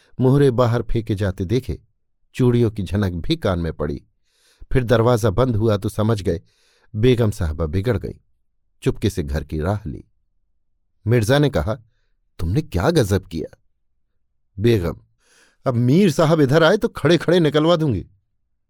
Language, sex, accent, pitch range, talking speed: Hindi, male, native, 95-145 Hz, 150 wpm